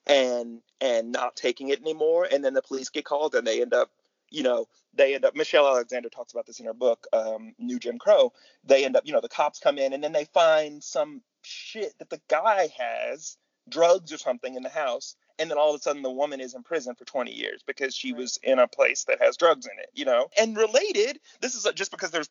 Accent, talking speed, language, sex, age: American, 245 wpm, English, male, 30-49